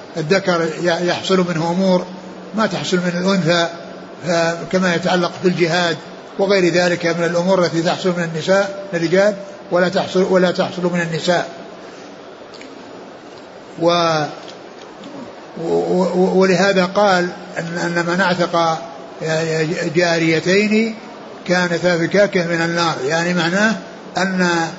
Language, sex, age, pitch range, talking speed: Arabic, male, 60-79, 170-195 Hz, 95 wpm